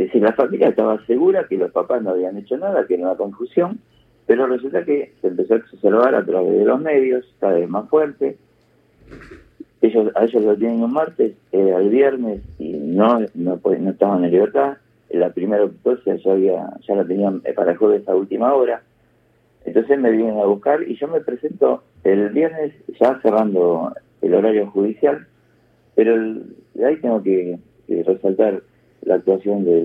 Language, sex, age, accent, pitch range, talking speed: Spanish, male, 50-69, Argentinian, 95-135 Hz, 180 wpm